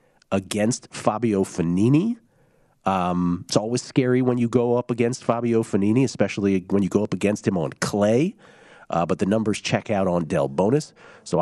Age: 40-59